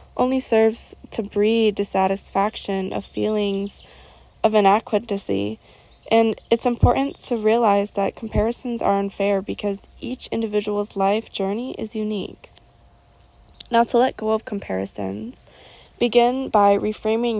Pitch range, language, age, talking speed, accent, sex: 200-225 Hz, English, 20-39, 115 wpm, American, female